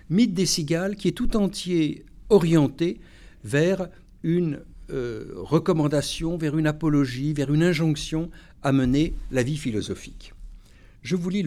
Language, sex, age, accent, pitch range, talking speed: French, male, 60-79, French, 120-180 Hz, 135 wpm